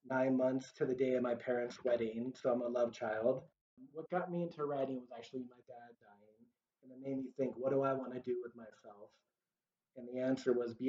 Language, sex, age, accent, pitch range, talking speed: English, male, 30-49, American, 120-145 Hz, 230 wpm